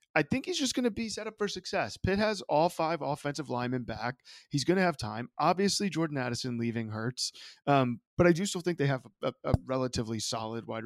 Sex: male